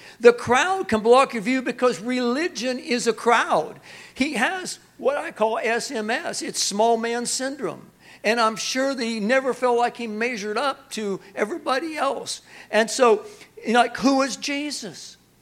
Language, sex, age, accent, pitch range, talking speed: English, male, 60-79, American, 180-240 Hz, 165 wpm